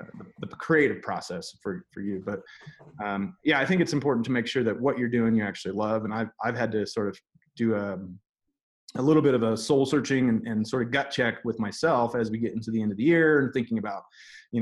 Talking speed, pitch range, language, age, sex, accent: 245 wpm, 110-145 Hz, English, 30-49, male, American